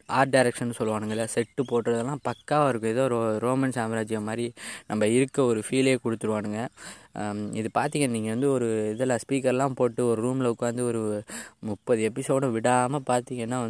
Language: Tamil